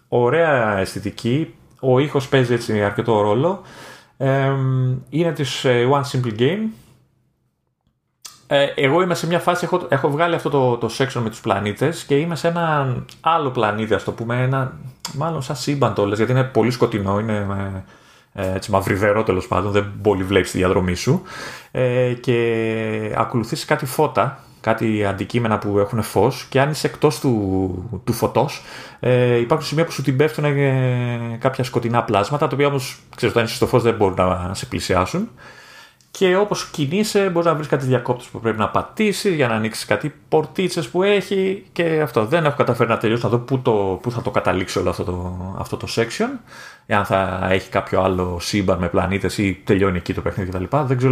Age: 30-49